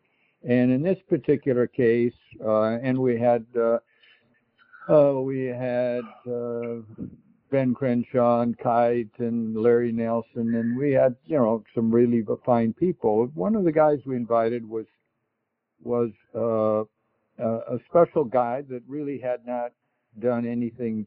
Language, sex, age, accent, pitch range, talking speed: English, male, 60-79, American, 115-135 Hz, 140 wpm